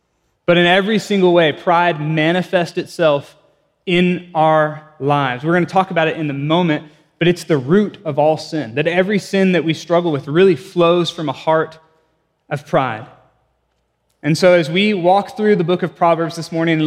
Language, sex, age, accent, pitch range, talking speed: English, male, 20-39, American, 145-175 Hz, 190 wpm